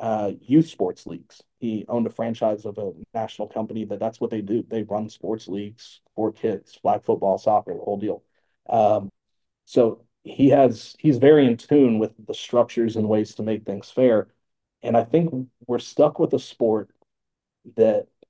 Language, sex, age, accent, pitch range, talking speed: English, male, 40-59, American, 110-125 Hz, 180 wpm